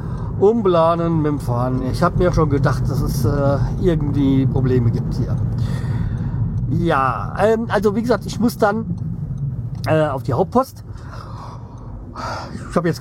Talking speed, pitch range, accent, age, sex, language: 145 wpm, 125-160 Hz, German, 40-59, male, German